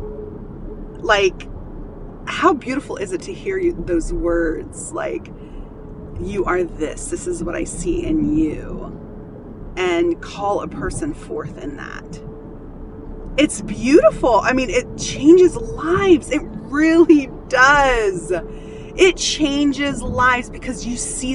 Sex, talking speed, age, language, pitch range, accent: female, 120 wpm, 30-49, English, 215-345 Hz, American